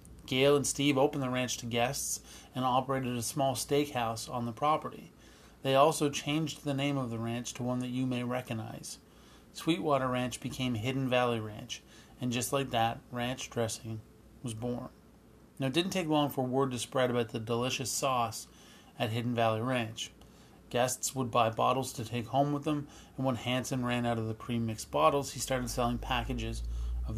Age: 30-49